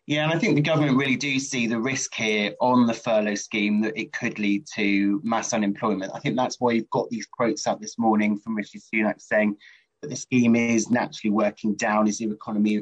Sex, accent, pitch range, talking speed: male, British, 105-130 Hz, 225 wpm